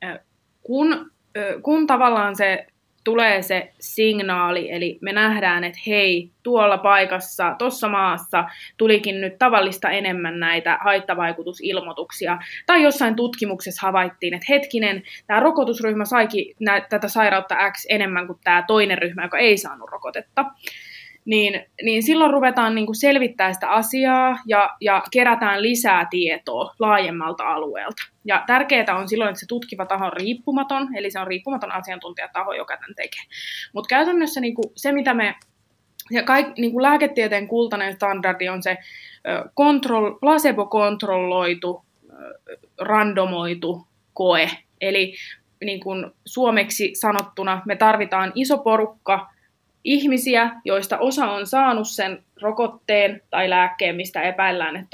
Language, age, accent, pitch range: Finnish, 20-39, native, 190-240 Hz